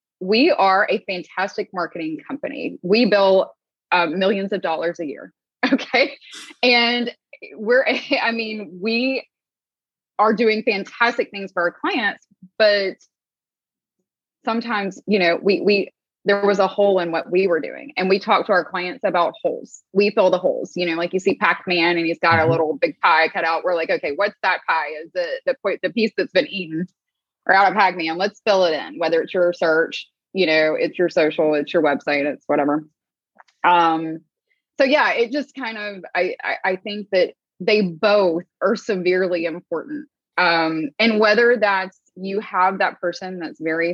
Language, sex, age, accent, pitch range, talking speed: English, female, 20-39, American, 170-225 Hz, 180 wpm